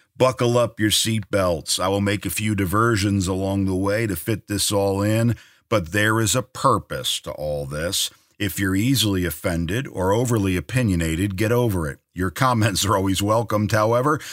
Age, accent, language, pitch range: 50-69, American, English, 85-110 Hz